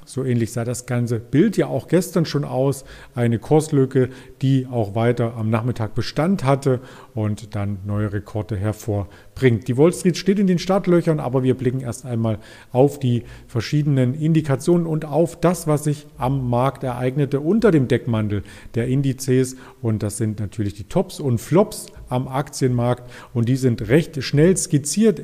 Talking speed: 165 wpm